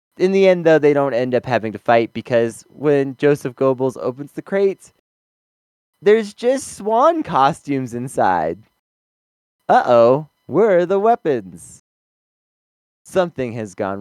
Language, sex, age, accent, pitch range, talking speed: English, male, 20-39, American, 110-165 Hz, 135 wpm